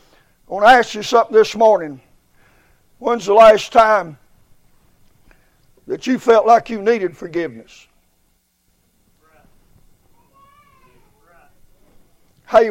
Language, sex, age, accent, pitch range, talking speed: English, male, 60-79, American, 235-295 Hz, 95 wpm